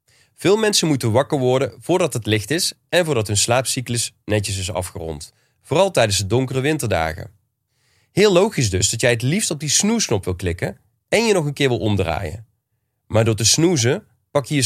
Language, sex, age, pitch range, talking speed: Dutch, male, 30-49, 105-135 Hz, 190 wpm